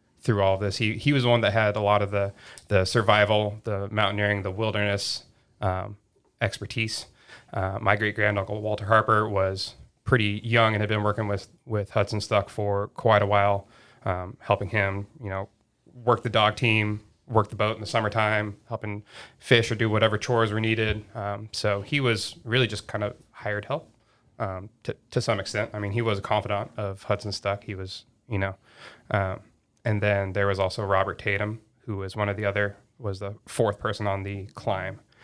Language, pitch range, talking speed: English, 100-115 Hz, 200 wpm